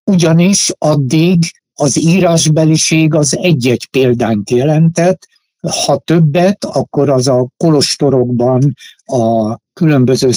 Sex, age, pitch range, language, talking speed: male, 60-79, 120-160 Hz, Hungarian, 95 wpm